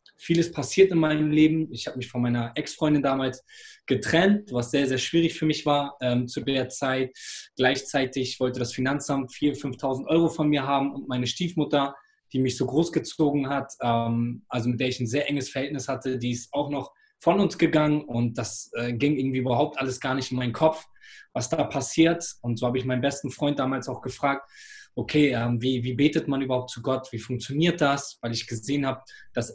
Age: 20-39